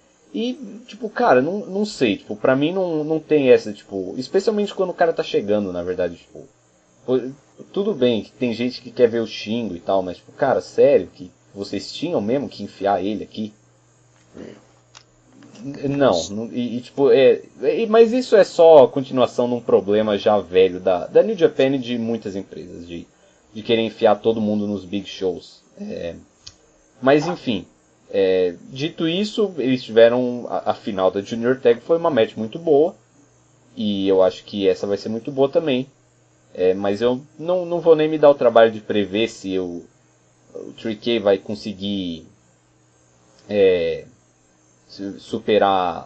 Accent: Brazilian